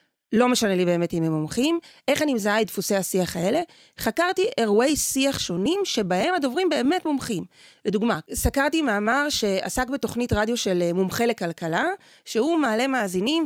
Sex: female